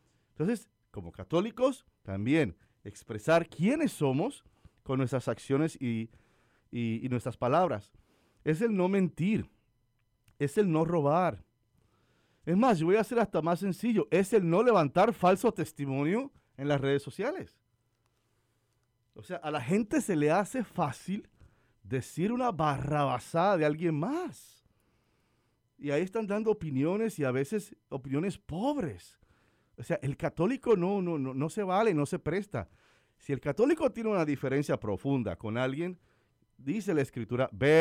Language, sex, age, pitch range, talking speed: English, male, 40-59, 115-170 Hz, 145 wpm